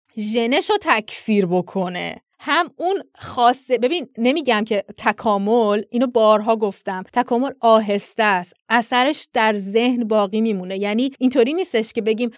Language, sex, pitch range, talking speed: Persian, female, 225-330 Hz, 125 wpm